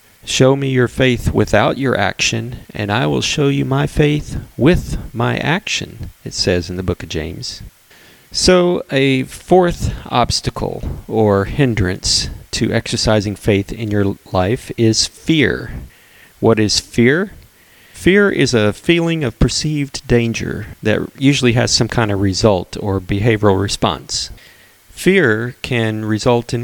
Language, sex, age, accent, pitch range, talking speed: English, male, 40-59, American, 105-130 Hz, 140 wpm